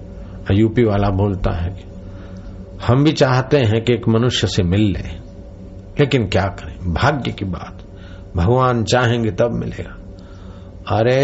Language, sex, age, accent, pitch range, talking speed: Hindi, male, 60-79, native, 95-110 Hz, 140 wpm